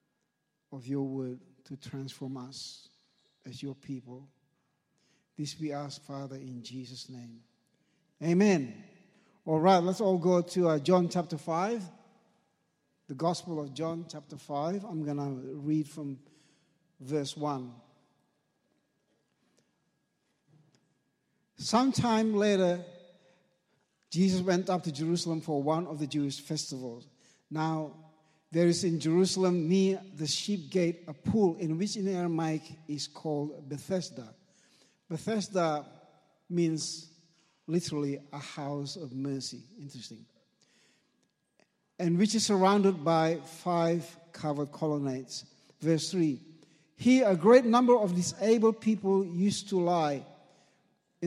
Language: English